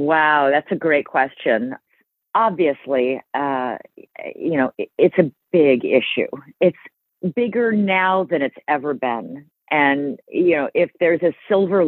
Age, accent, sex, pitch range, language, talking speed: 40-59, American, female, 140-205 Hz, English, 135 wpm